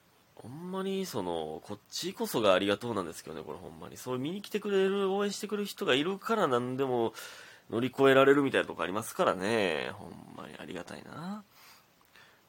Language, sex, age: Japanese, male, 30-49